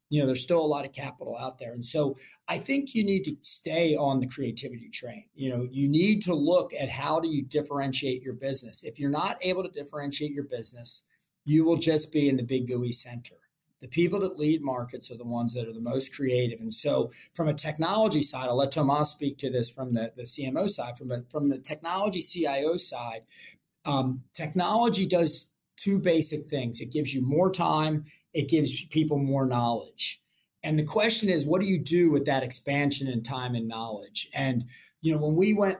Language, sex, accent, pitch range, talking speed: English, male, American, 130-160 Hz, 210 wpm